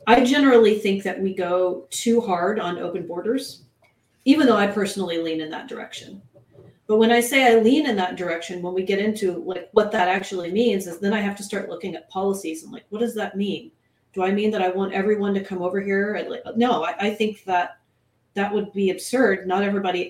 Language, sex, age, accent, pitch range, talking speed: English, female, 30-49, American, 180-215 Hz, 220 wpm